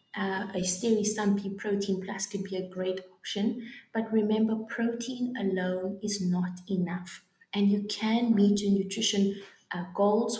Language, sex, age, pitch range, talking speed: English, female, 20-39, 190-220 Hz, 150 wpm